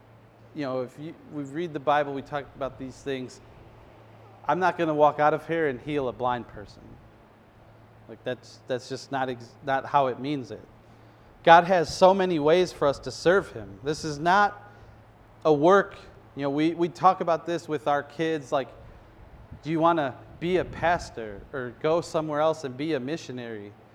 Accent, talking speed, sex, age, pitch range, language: American, 195 wpm, male, 30-49, 115-160 Hz, English